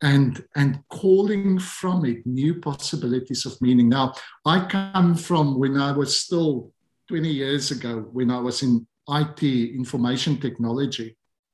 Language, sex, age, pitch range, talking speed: English, male, 50-69, 125-160 Hz, 140 wpm